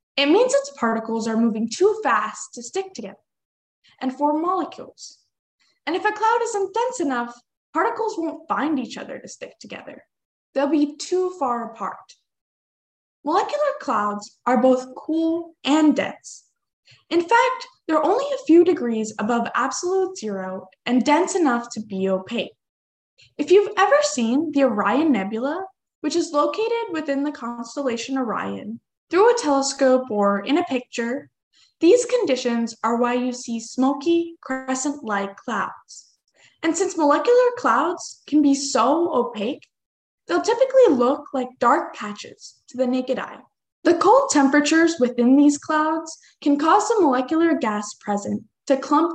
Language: English